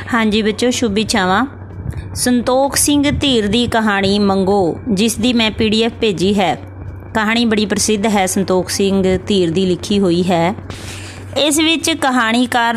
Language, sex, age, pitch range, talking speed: Punjabi, female, 20-39, 200-245 Hz, 140 wpm